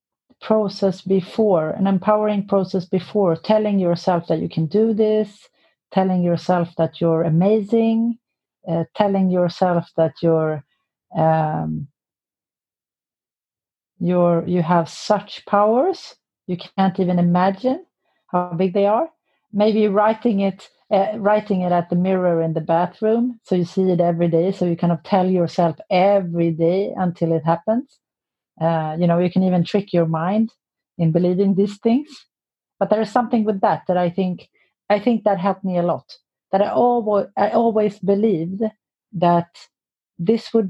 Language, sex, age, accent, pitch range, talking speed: English, female, 40-59, Swedish, 175-210 Hz, 155 wpm